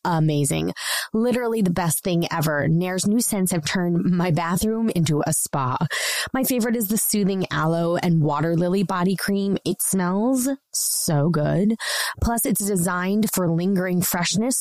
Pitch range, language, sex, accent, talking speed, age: 160-200 Hz, English, female, American, 150 wpm, 20-39